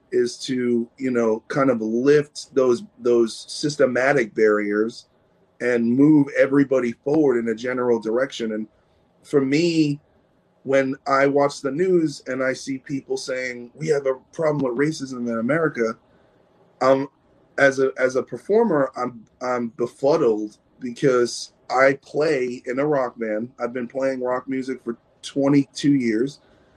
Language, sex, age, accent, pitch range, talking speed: English, male, 30-49, American, 125-150 Hz, 145 wpm